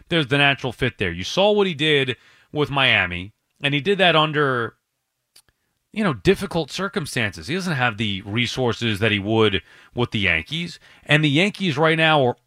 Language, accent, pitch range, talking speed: English, American, 120-165 Hz, 185 wpm